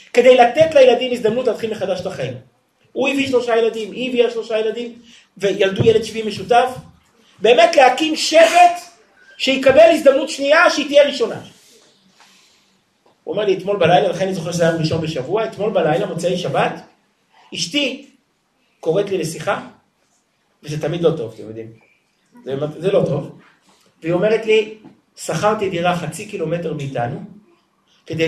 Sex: male